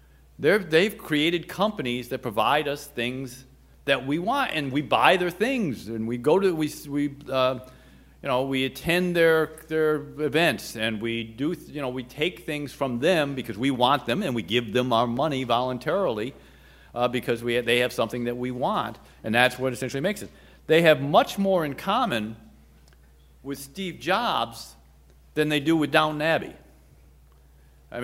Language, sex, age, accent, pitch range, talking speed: English, male, 50-69, American, 100-145 Hz, 175 wpm